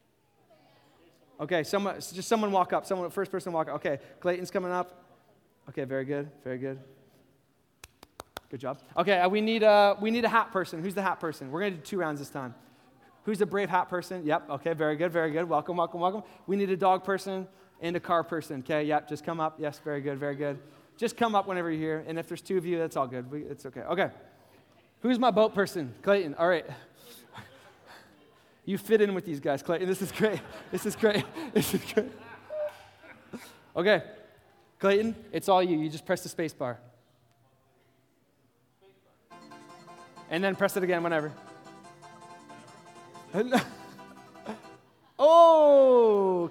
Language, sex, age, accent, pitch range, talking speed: English, male, 20-39, American, 145-195 Hz, 175 wpm